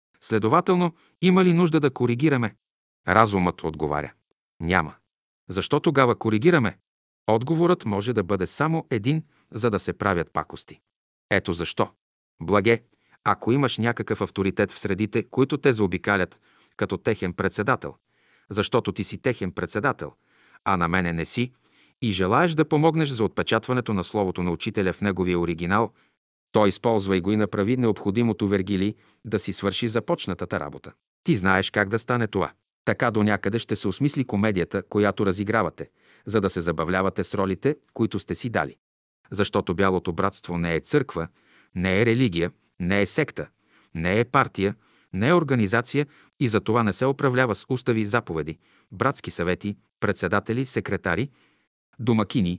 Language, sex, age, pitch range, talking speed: Bulgarian, male, 40-59, 95-125 Hz, 150 wpm